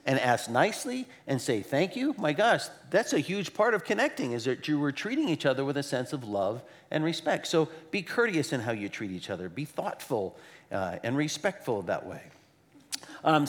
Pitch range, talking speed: 145-185 Hz, 205 wpm